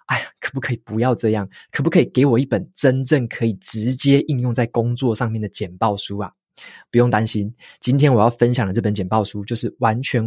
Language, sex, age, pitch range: Chinese, male, 20-39, 105-135 Hz